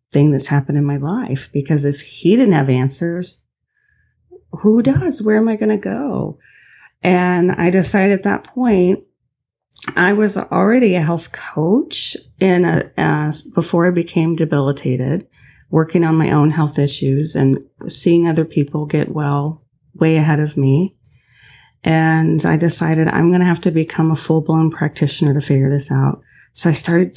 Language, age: English, 30-49